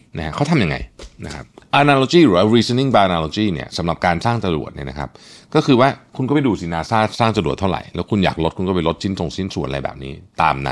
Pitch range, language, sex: 85-120 Hz, Thai, male